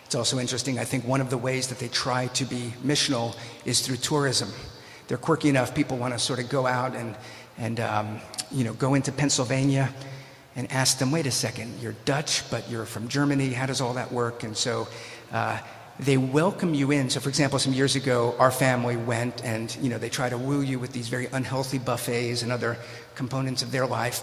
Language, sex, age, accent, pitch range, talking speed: English, male, 50-69, American, 120-140 Hz, 220 wpm